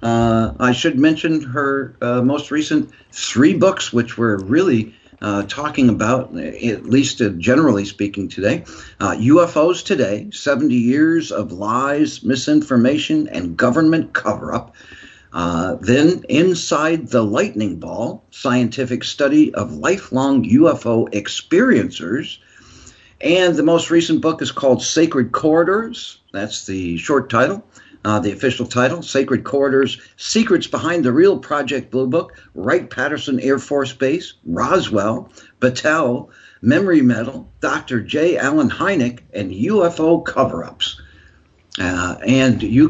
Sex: male